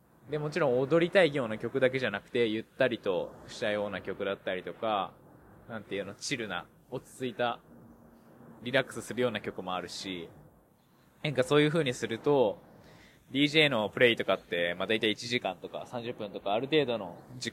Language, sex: Japanese, male